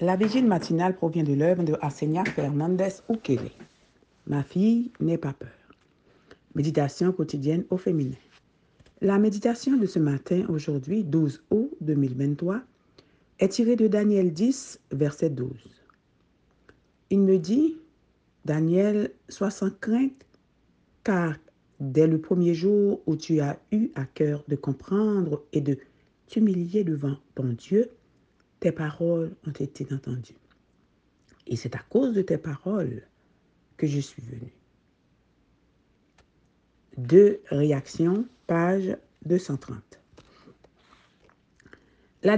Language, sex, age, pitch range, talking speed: French, female, 60-79, 145-200 Hz, 120 wpm